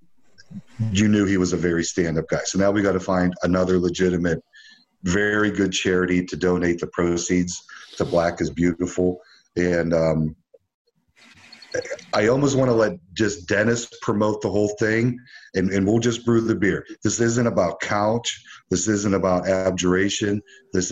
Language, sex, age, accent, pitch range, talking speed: English, male, 50-69, American, 90-105 Hz, 160 wpm